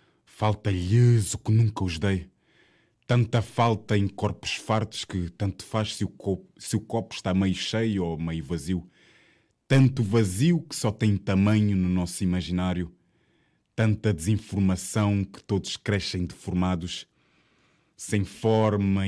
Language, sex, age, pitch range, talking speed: Portuguese, male, 20-39, 95-115 Hz, 130 wpm